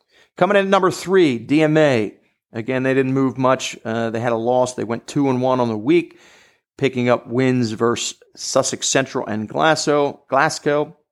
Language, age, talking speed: English, 40-59, 175 wpm